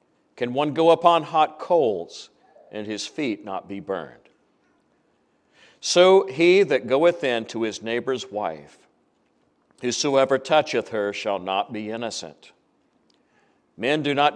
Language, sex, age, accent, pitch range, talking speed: English, male, 50-69, American, 110-160 Hz, 130 wpm